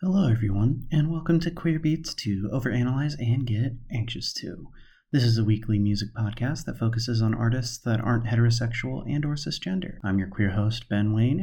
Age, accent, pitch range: 30-49, American, 105-140 Hz